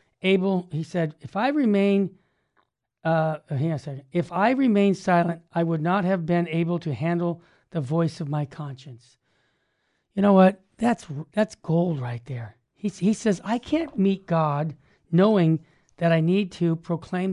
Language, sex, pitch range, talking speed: English, male, 155-200 Hz, 175 wpm